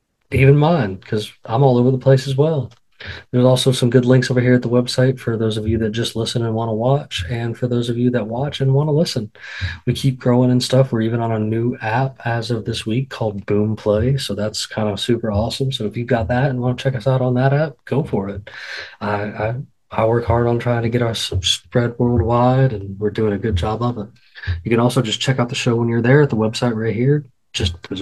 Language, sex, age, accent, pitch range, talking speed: English, male, 20-39, American, 110-130 Hz, 260 wpm